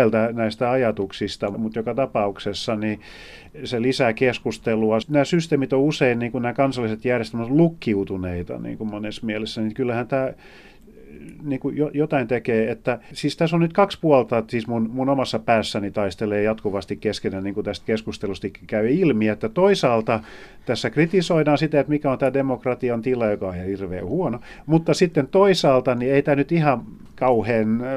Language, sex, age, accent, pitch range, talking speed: Finnish, male, 40-59, native, 105-130 Hz, 160 wpm